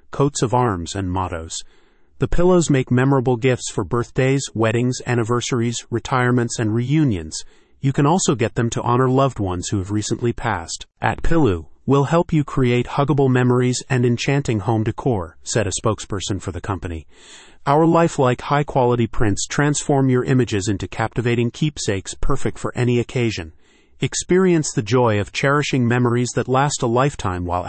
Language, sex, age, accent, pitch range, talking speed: English, male, 30-49, American, 110-135 Hz, 160 wpm